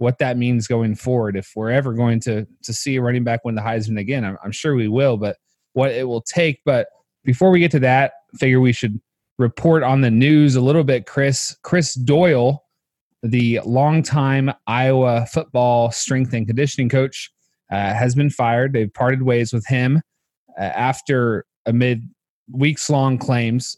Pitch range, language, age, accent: 115-135 Hz, English, 20-39, American